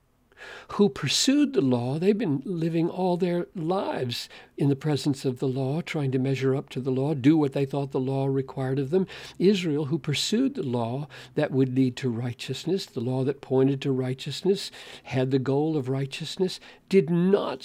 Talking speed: 185 wpm